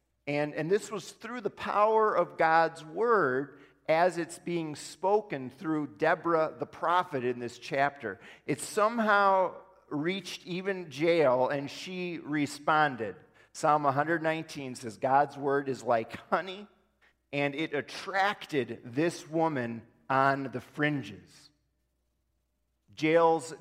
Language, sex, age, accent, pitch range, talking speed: English, male, 40-59, American, 135-170 Hz, 115 wpm